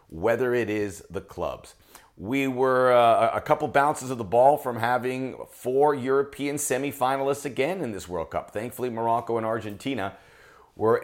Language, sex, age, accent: English, male, 40-59, American